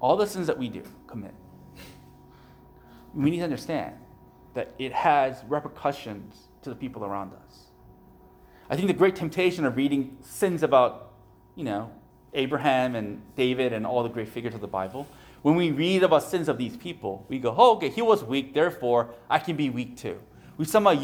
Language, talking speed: English, 185 wpm